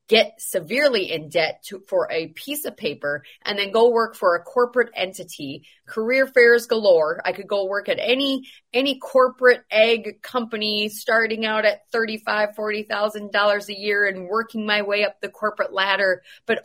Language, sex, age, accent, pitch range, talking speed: English, female, 30-49, American, 175-225 Hz, 175 wpm